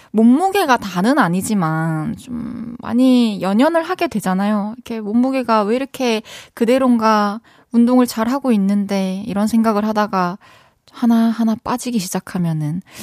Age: 20-39